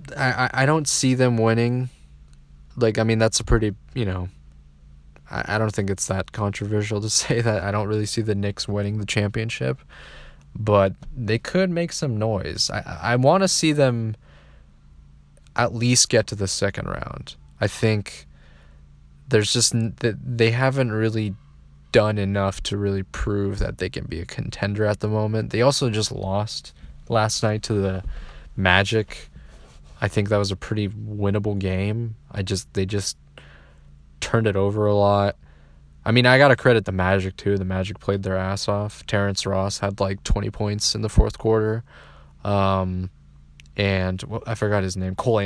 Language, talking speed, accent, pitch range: English, 170 wpm, American, 90-110 Hz